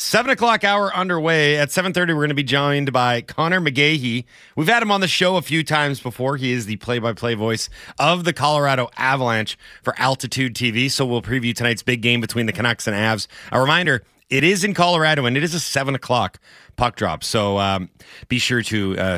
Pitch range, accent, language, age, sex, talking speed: 115-155 Hz, American, English, 30-49, male, 210 wpm